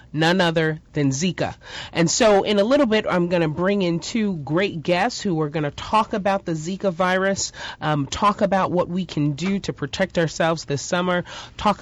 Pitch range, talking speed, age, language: 160-200 Hz, 205 wpm, 30-49, English